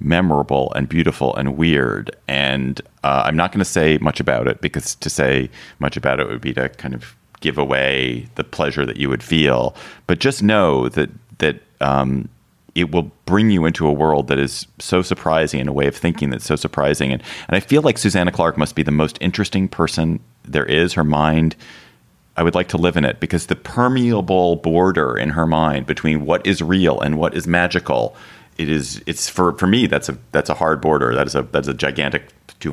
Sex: male